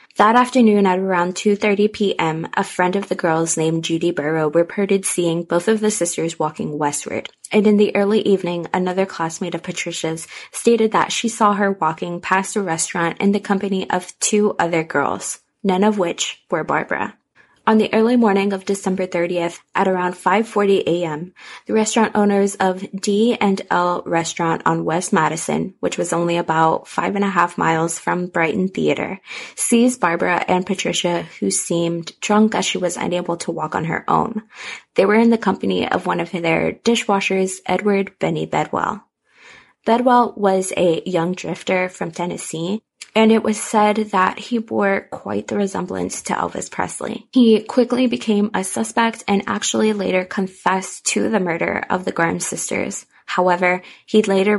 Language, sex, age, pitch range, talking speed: English, female, 20-39, 170-210 Hz, 165 wpm